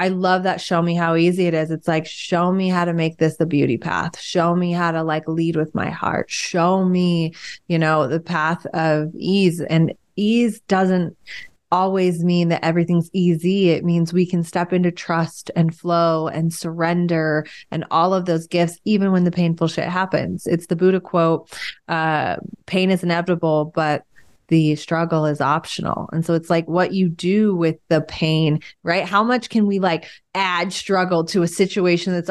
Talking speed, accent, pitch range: 190 wpm, American, 165-185 Hz